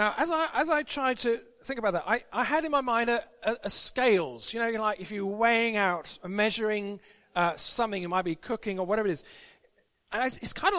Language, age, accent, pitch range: English, 40-59, British, 205-260 Hz